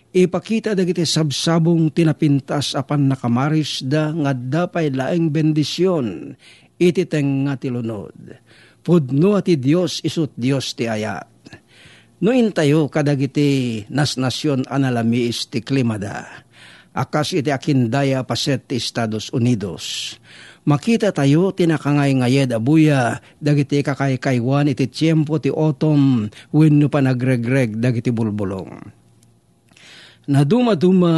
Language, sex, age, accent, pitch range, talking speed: Filipino, male, 50-69, native, 130-160 Hz, 110 wpm